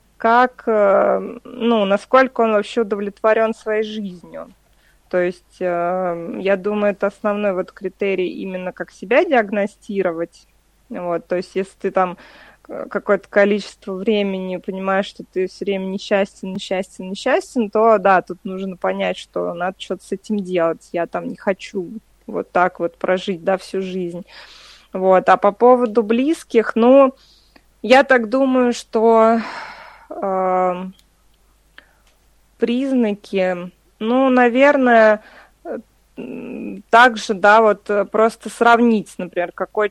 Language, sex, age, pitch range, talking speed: Russian, female, 20-39, 185-225 Hz, 115 wpm